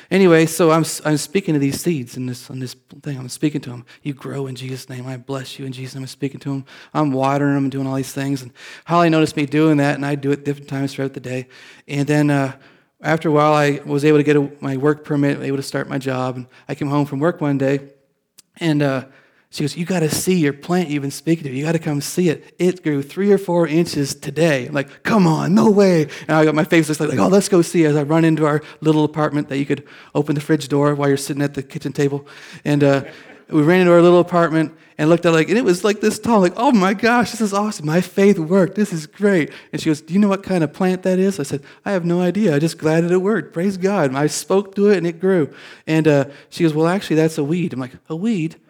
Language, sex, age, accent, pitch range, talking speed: English, male, 30-49, American, 140-175 Hz, 280 wpm